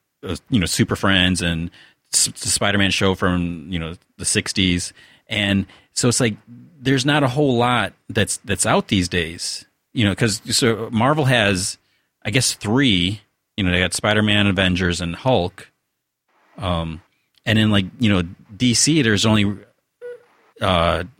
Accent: American